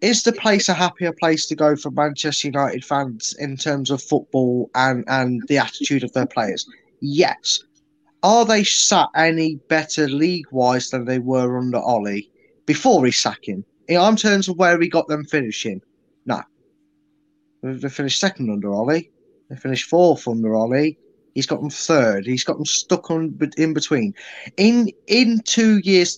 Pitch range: 140-175 Hz